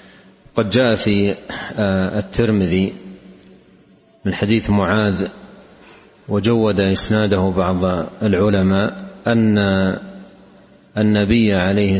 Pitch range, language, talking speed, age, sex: 95-110 Hz, Arabic, 70 wpm, 40-59, male